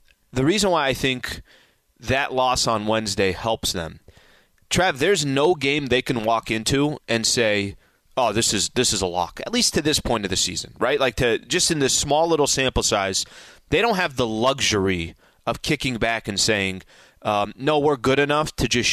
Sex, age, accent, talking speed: male, 30-49, American, 200 wpm